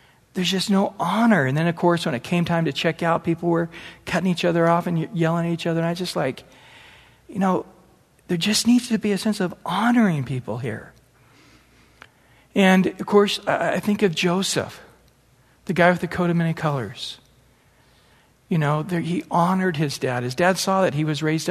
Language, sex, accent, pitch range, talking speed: English, male, American, 155-185 Hz, 205 wpm